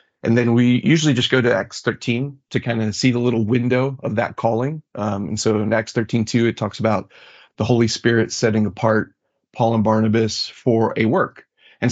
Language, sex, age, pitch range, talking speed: English, male, 30-49, 110-125 Hz, 205 wpm